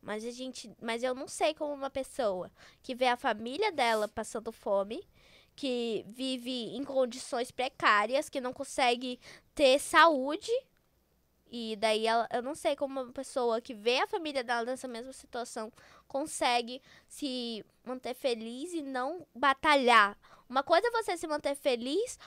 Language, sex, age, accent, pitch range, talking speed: Portuguese, female, 10-29, Brazilian, 240-295 Hz, 155 wpm